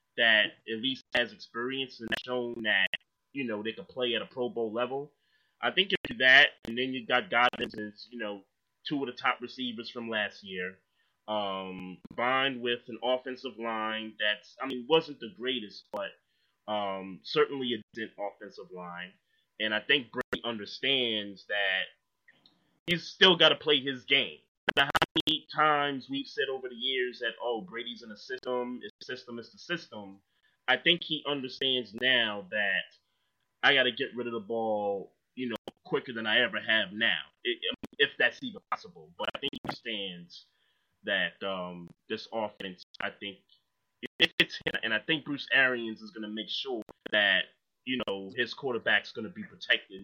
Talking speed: 175 wpm